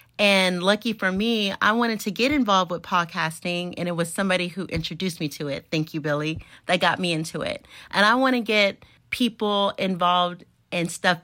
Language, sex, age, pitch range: English, female, 30-49, 180-215 Hz